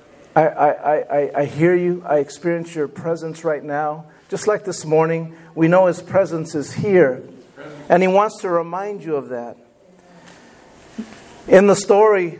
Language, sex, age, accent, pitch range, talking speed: English, male, 50-69, American, 175-250 Hz, 160 wpm